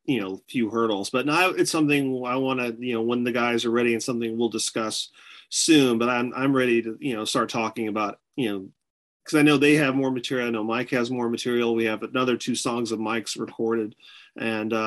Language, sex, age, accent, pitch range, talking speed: English, male, 40-59, American, 110-135 Hz, 230 wpm